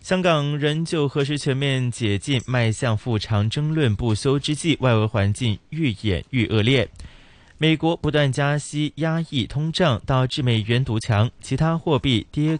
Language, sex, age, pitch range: Chinese, male, 20-39, 110-150 Hz